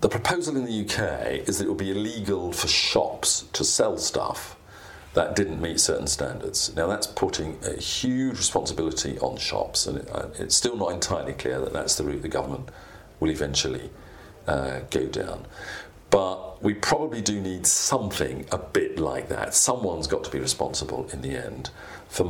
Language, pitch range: English, 85-125 Hz